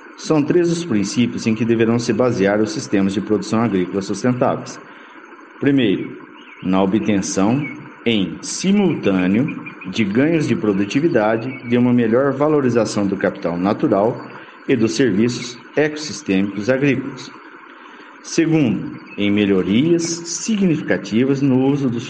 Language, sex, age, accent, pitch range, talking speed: Portuguese, male, 50-69, Brazilian, 105-155 Hz, 115 wpm